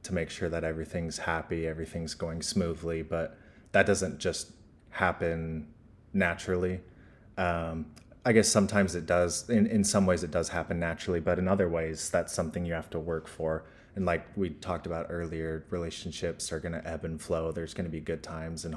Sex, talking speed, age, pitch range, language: male, 185 wpm, 30-49, 80-95 Hz, English